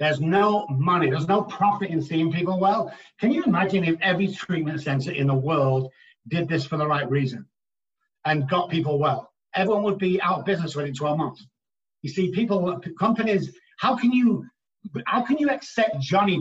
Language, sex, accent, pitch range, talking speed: English, male, British, 165-220 Hz, 185 wpm